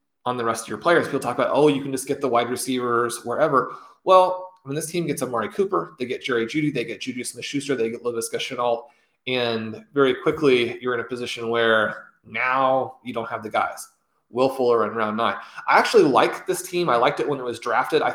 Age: 30-49